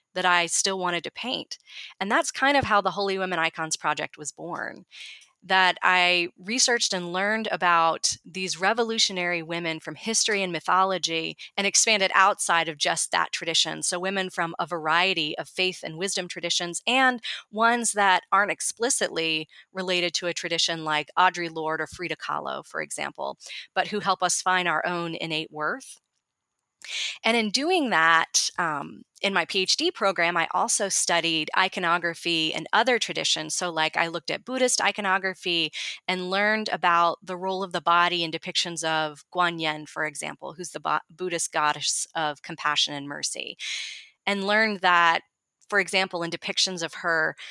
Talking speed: 165 wpm